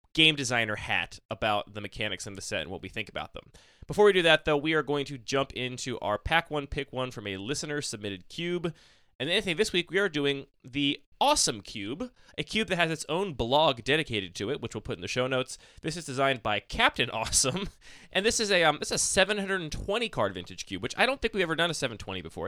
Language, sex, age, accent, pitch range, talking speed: English, male, 20-39, American, 105-160 Hz, 235 wpm